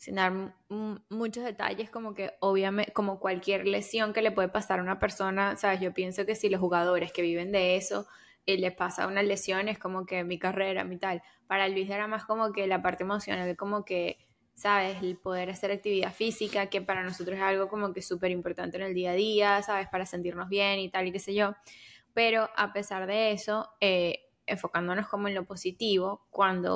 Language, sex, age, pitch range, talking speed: Spanish, female, 10-29, 185-210 Hz, 215 wpm